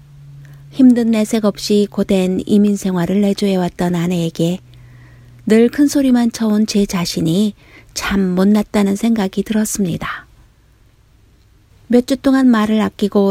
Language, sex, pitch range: Korean, female, 180-230 Hz